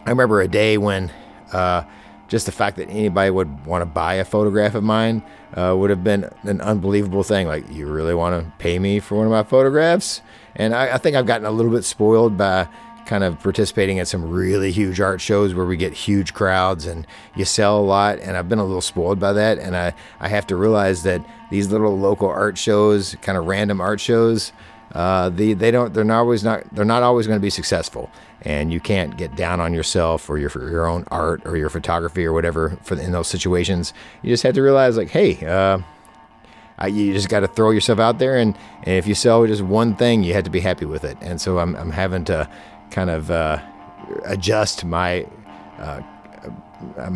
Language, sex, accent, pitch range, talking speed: English, male, American, 90-105 Hz, 220 wpm